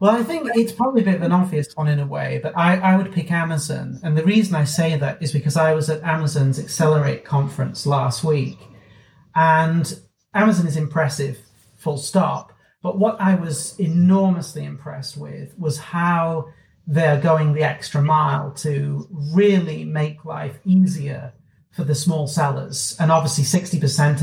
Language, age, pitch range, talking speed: English, 40-59, 140-170 Hz, 170 wpm